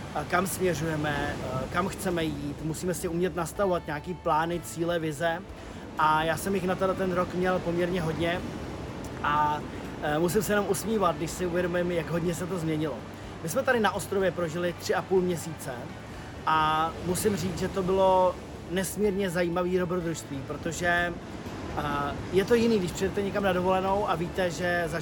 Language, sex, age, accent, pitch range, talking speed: Czech, male, 30-49, native, 165-190 Hz, 165 wpm